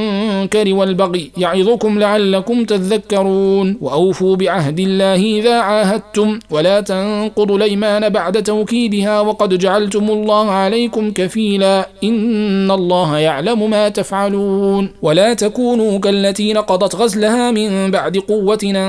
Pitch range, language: 195-215 Hz, Arabic